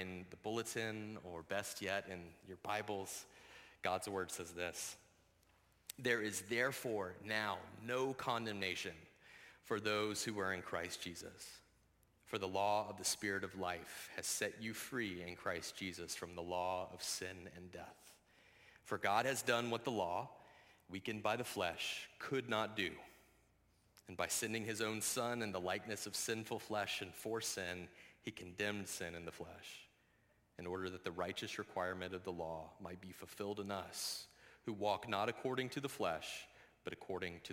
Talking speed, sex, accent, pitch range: 170 wpm, male, American, 90-110 Hz